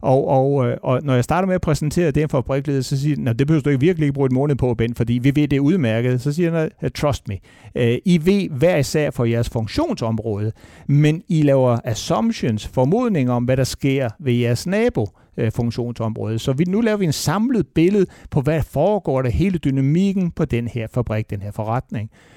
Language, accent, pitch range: Danish, native, 125-165 Hz